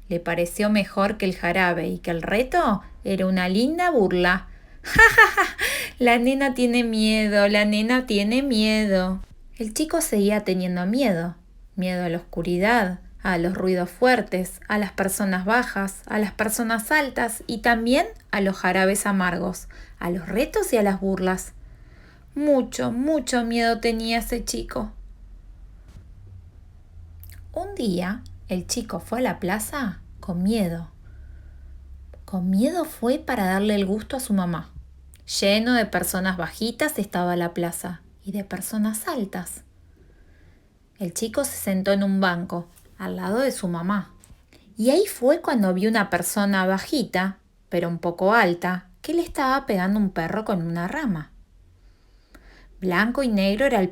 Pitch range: 175-230 Hz